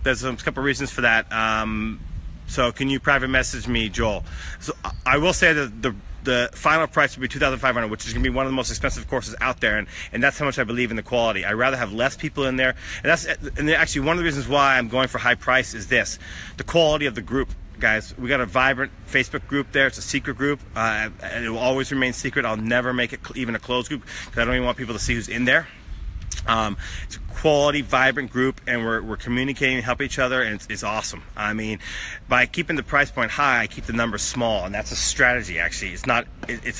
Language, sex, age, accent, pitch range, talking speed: English, male, 30-49, American, 110-135 Hz, 250 wpm